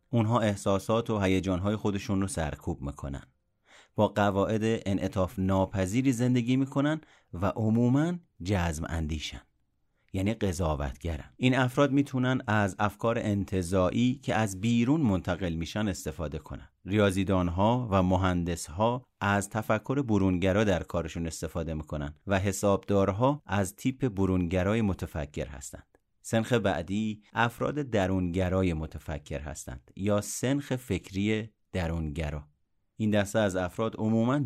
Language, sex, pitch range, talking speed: Persian, male, 90-115 Hz, 115 wpm